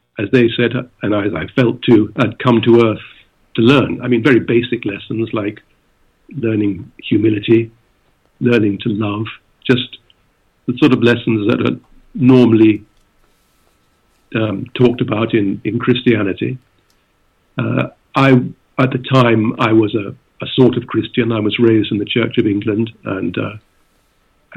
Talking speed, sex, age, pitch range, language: 150 wpm, male, 50-69, 110-125 Hz, English